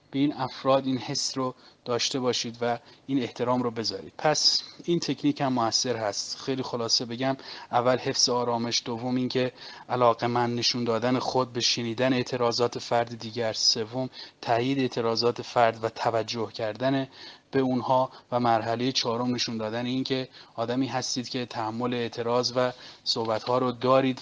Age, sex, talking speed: 30-49, male, 150 wpm